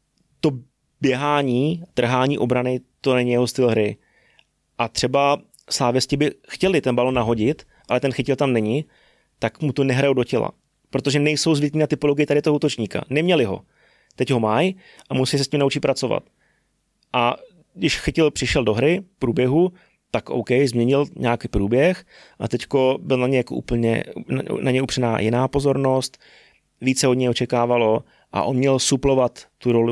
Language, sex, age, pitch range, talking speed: Czech, male, 30-49, 120-145 Hz, 160 wpm